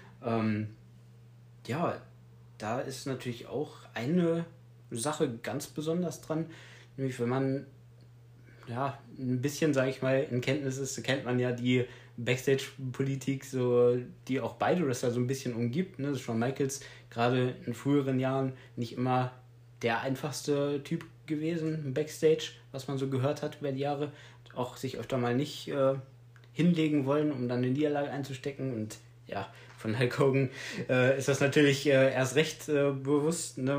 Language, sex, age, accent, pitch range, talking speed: German, male, 20-39, German, 115-135 Hz, 165 wpm